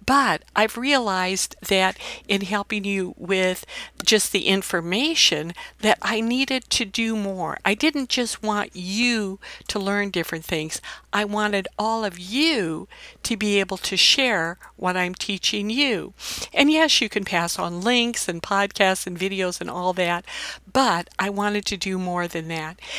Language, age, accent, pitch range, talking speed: English, 60-79, American, 185-225 Hz, 160 wpm